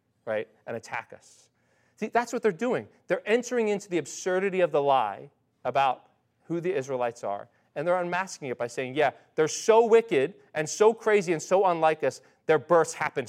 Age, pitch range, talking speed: 30-49, 130-185 Hz, 190 wpm